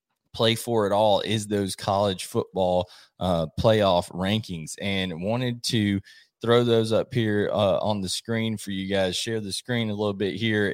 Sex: male